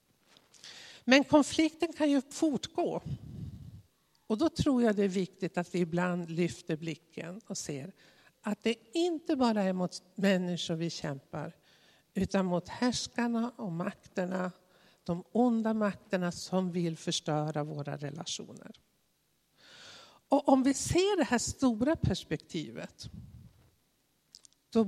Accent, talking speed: native, 120 wpm